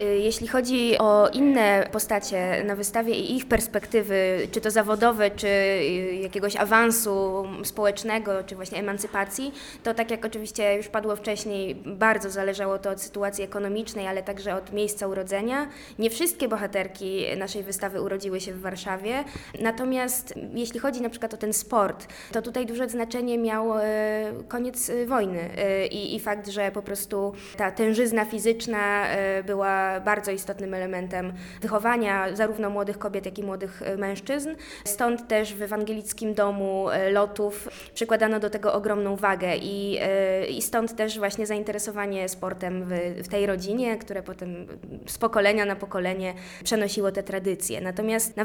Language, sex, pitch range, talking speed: Polish, female, 195-225 Hz, 140 wpm